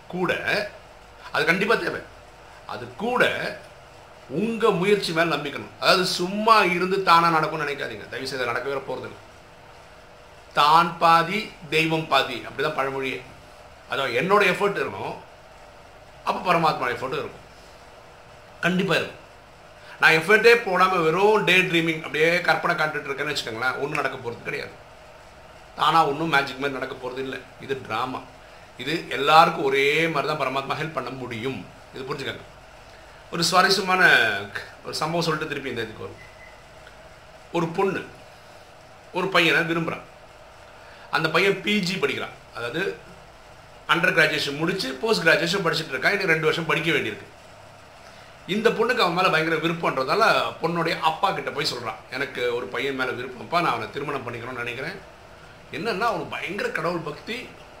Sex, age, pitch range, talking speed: male, 50-69, 135-185 Hz, 70 wpm